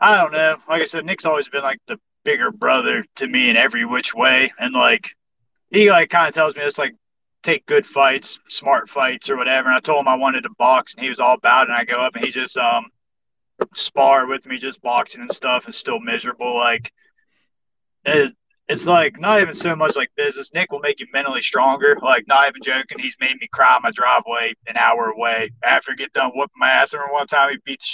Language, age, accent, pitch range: English, 30-49, American, 140-200 Hz